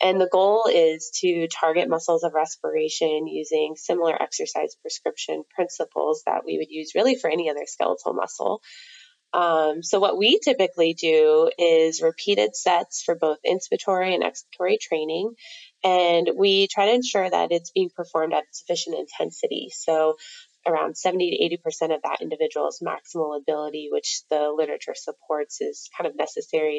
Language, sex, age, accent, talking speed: English, female, 20-39, American, 155 wpm